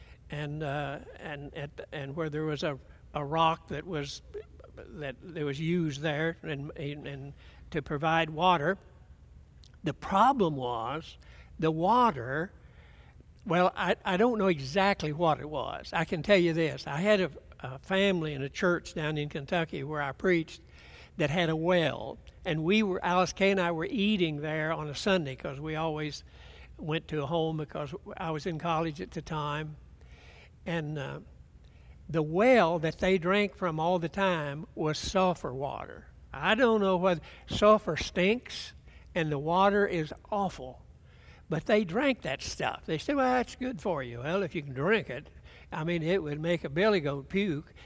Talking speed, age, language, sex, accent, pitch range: 175 wpm, 60-79, English, male, American, 140-185 Hz